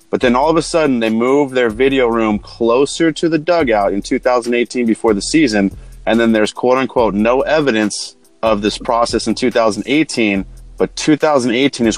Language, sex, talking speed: English, male, 175 wpm